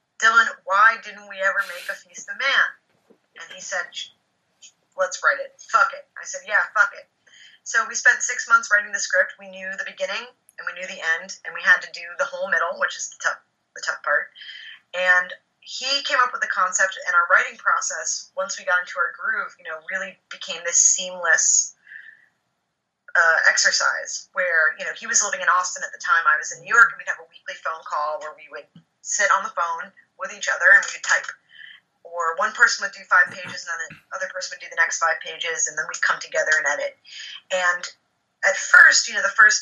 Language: English